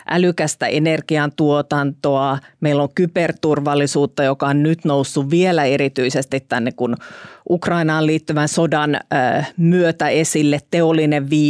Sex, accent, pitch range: female, native, 140-165 Hz